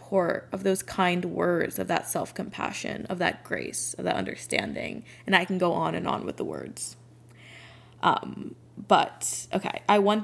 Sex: female